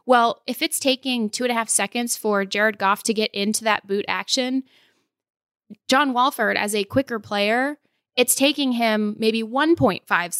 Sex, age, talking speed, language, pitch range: female, 20-39, 165 wpm, English, 200-240 Hz